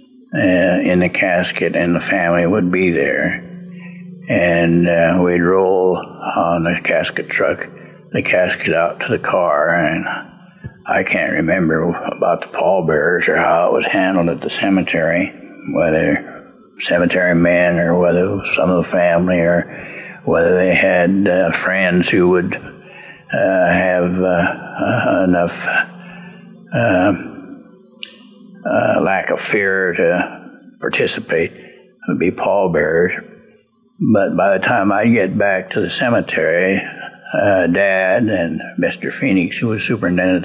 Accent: American